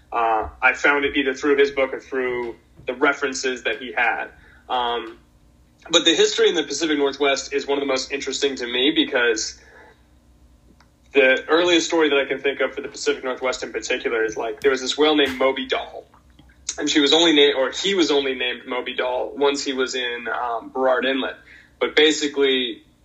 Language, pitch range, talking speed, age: English, 125-150 Hz, 200 wpm, 20-39